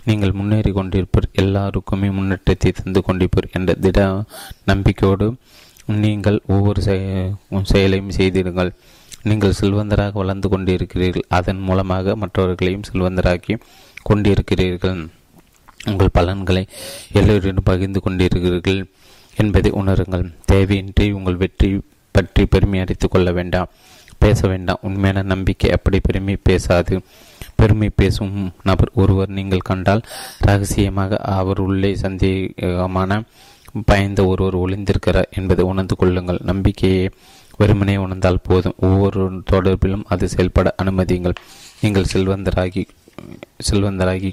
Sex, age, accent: male, 30-49, native